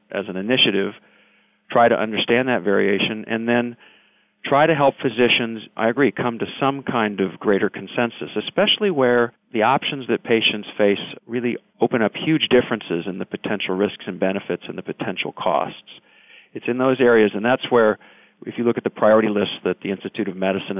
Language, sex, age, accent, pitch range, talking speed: English, male, 50-69, American, 105-125 Hz, 185 wpm